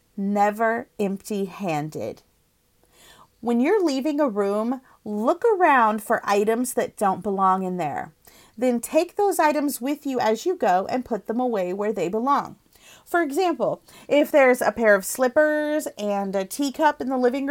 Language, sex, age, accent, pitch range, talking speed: English, female, 30-49, American, 200-275 Hz, 160 wpm